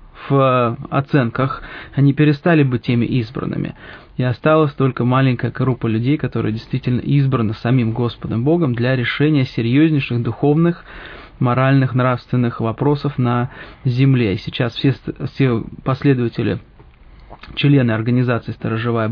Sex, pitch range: male, 120-150 Hz